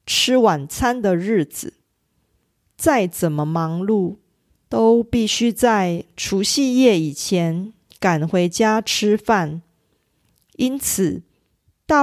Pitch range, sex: 185-255 Hz, female